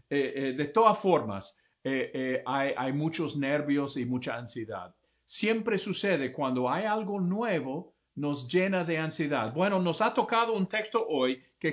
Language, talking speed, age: English, 165 wpm, 50-69